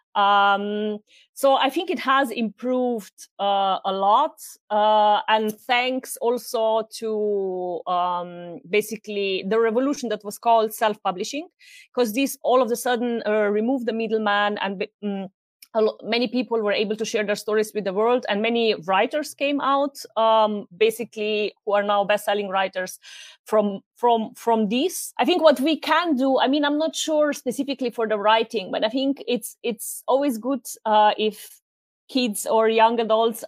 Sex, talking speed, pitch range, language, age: female, 165 wpm, 210-245 Hz, English, 30-49